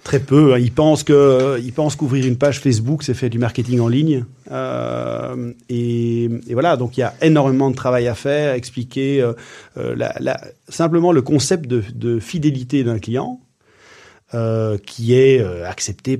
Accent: French